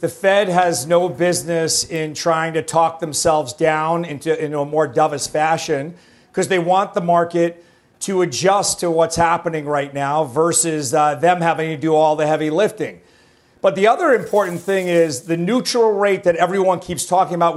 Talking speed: 180 wpm